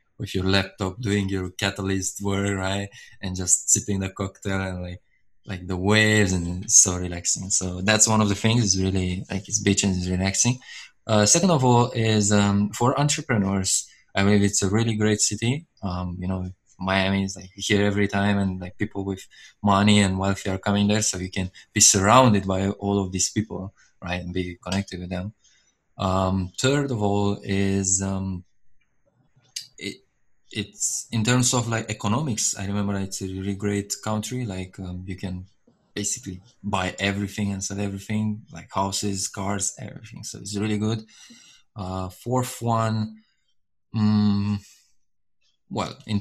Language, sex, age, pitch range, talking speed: English, male, 20-39, 95-105 Hz, 170 wpm